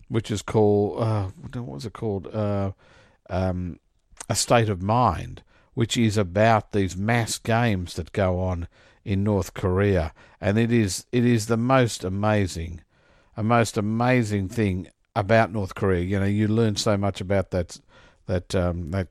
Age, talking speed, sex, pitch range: 50-69, 165 wpm, male, 90-115 Hz